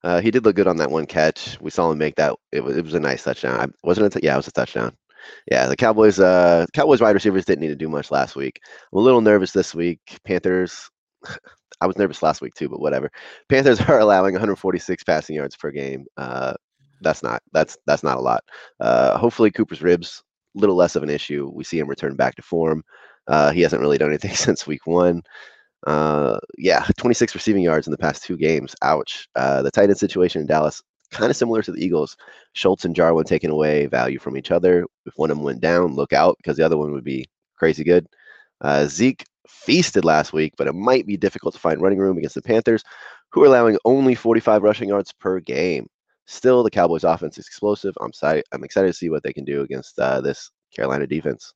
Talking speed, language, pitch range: 225 wpm, English, 75-100 Hz